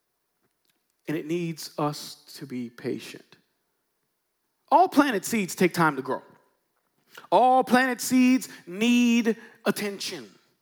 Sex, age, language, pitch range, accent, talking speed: male, 40-59, English, 180-250 Hz, American, 105 wpm